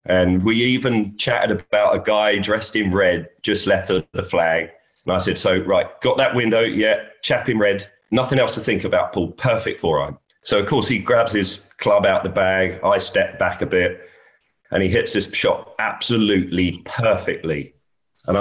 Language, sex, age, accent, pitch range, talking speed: English, male, 30-49, British, 95-110 Hz, 190 wpm